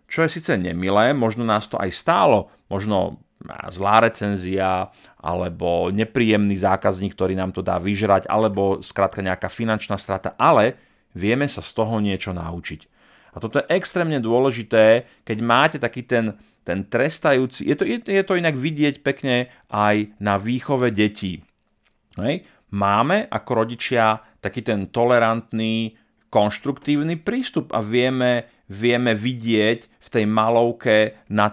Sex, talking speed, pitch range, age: male, 135 wpm, 100-125 Hz, 30-49